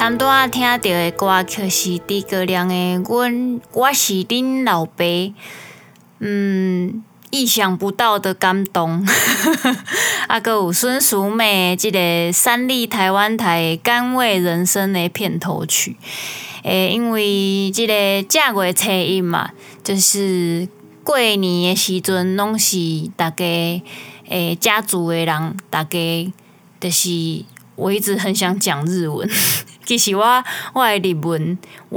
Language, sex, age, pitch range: Chinese, female, 20-39, 175-210 Hz